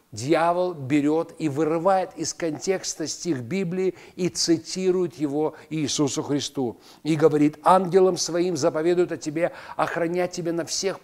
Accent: native